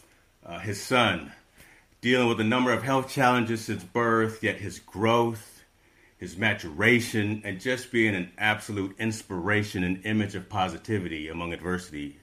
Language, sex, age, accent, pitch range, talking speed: English, male, 40-59, American, 95-115 Hz, 140 wpm